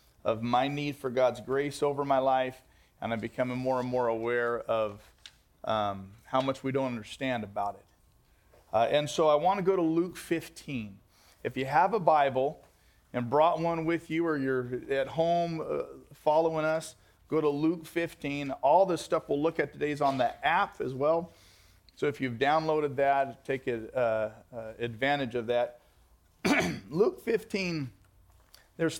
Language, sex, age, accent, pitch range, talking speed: English, male, 40-59, American, 120-165 Hz, 175 wpm